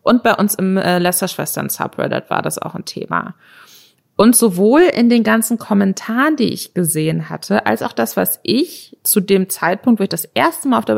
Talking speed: 200 wpm